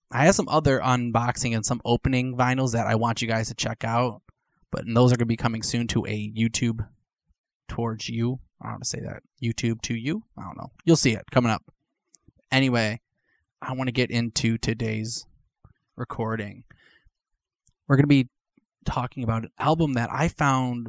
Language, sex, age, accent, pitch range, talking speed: English, male, 20-39, American, 115-135 Hz, 190 wpm